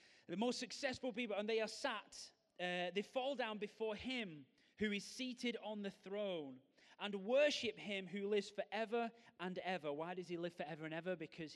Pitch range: 160-210 Hz